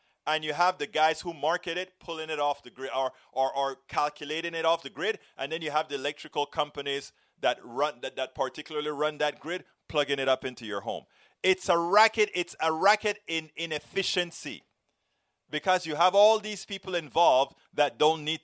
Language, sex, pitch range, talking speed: English, male, 130-175 Hz, 195 wpm